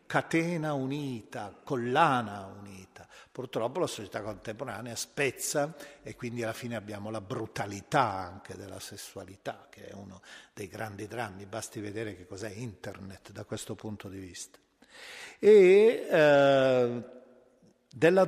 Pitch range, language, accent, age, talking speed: 110-155 Hz, Italian, native, 50-69, 125 wpm